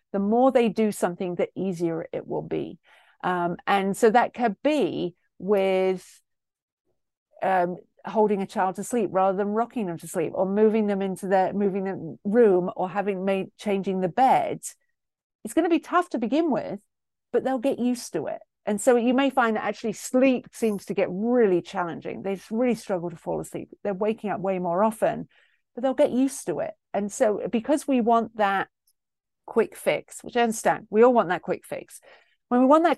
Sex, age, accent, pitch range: female, 40-59, British, 185-240 Hz